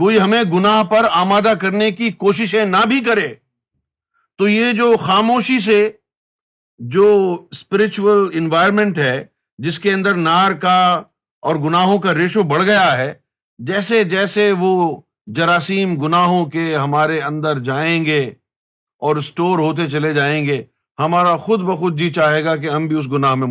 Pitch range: 145-200 Hz